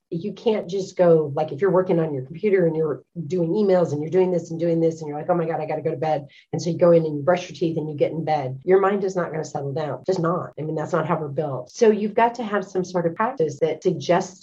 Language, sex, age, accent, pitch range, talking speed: English, female, 40-59, American, 150-175 Hz, 320 wpm